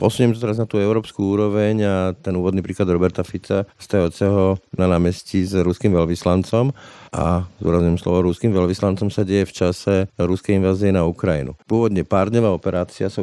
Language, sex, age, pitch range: Slovak, male, 50-69, 85-100 Hz